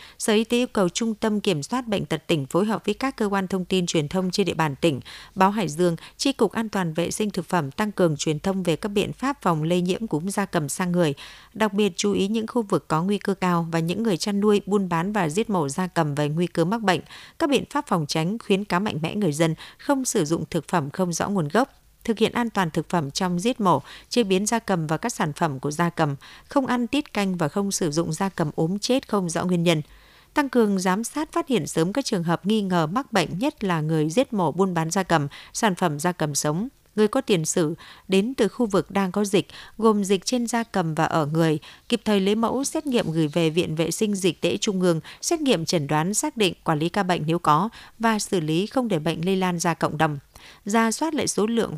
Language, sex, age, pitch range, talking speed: Vietnamese, female, 50-69, 165-215 Hz, 265 wpm